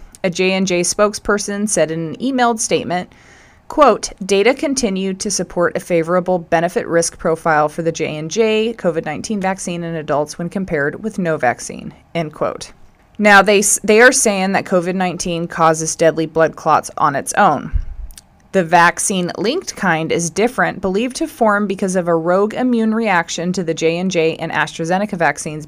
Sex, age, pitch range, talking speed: female, 20-39, 165-210 Hz, 155 wpm